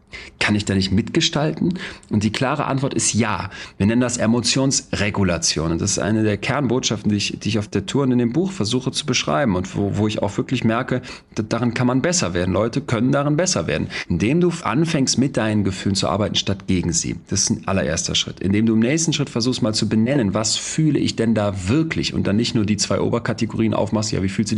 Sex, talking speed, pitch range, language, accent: male, 230 wpm, 100-140 Hz, German, German